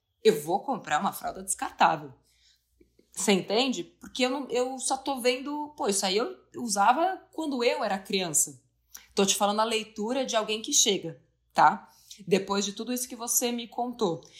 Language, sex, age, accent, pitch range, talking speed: Portuguese, female, 20-39, Brazilian, 175-245 Hz, 170 wpm